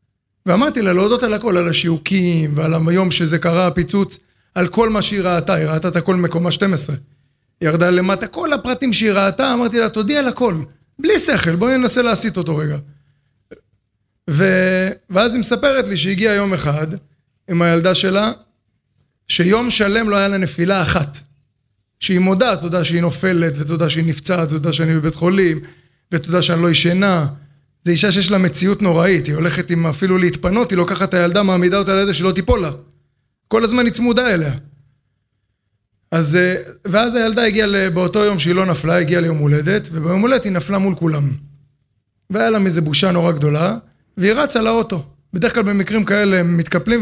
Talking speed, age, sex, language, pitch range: 170 wpm, 30-49, male, Hebrew, 155-200 Hz